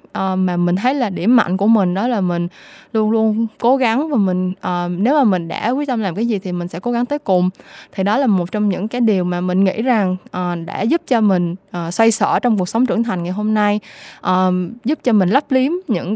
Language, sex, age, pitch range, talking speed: Vietnamese, female, 20-39, 190-250 Hz, 260 wpm